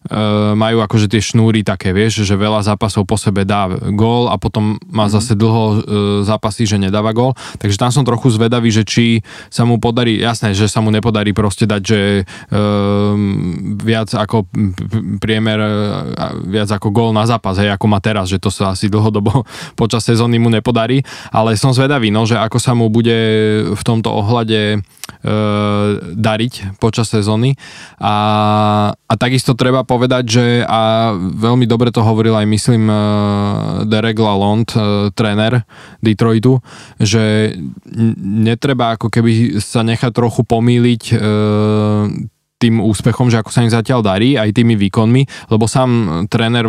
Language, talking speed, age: Slovak, 145 wpm, 20-39